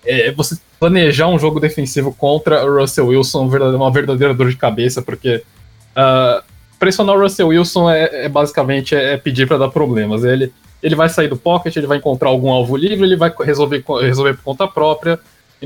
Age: 20-39